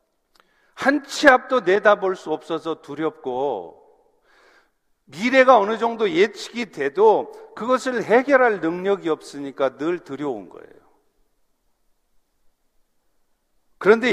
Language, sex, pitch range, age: Korean, male, 195-260 Hz, 50-69